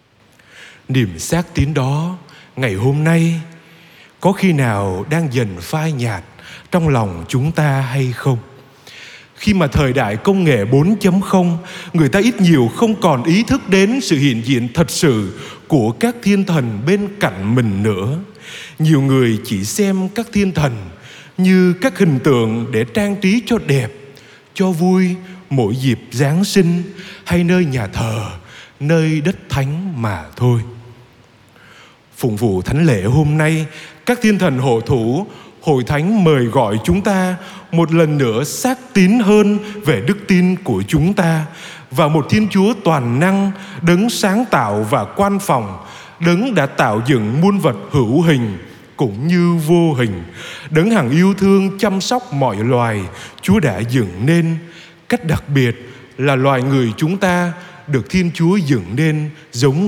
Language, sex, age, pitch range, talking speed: Vietnamese, male, 20-39, 125-185 Hz, 160 wpm